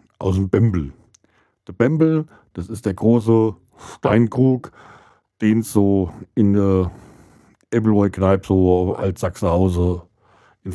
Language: German